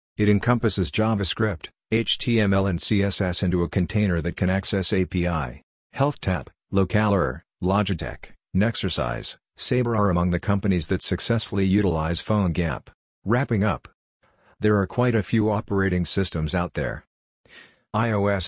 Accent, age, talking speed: American, 50-69, 125 wpm